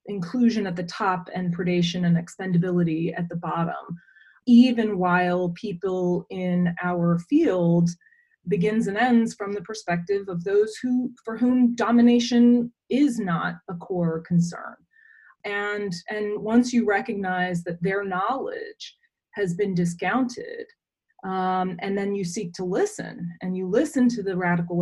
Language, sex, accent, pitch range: English, female, American, 175-220 Hz